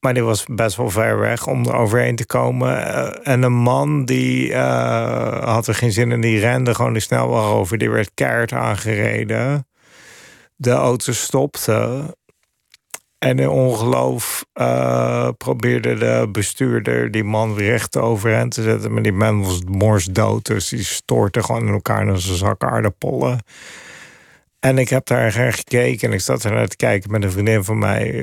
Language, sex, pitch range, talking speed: Dutch, male, 100-120 Hz, 170 wpm